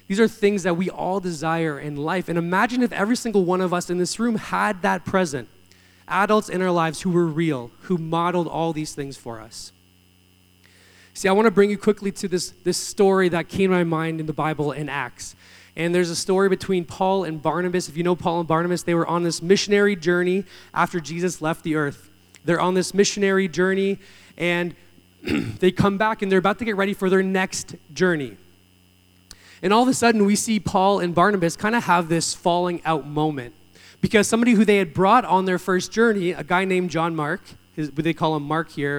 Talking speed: 215 wpm